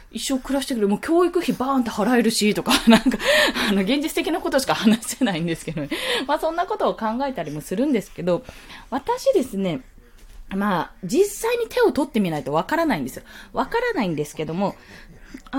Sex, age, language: female, 20-39, Japanese